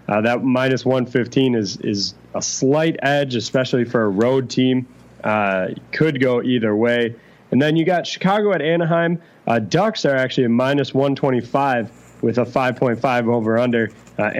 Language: English